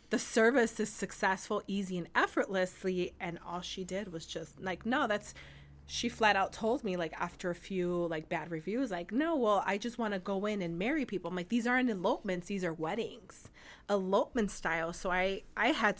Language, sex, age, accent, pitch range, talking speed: English, female, 30-49, American, 175-220 Hz, 205 wpm